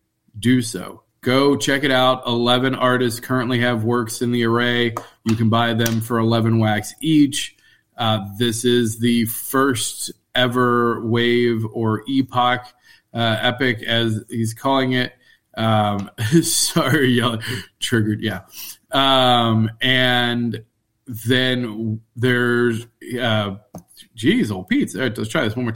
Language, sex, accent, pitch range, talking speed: English, male, American, 115-130 Hz, 130 wpm